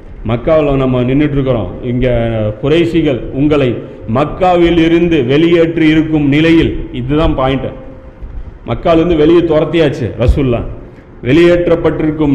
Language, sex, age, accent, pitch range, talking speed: Tamil, male, 40-59, native, 125-160 Hz, 85 wpm